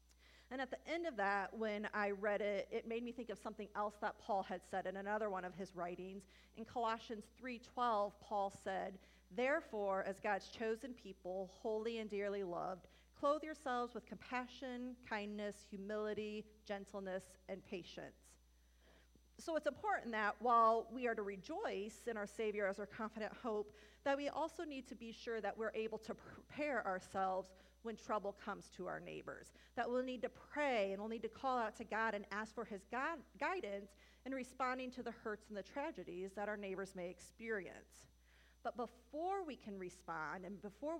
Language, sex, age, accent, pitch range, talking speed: English, female, 40-59, American, 195-230 Hz, 180 wpm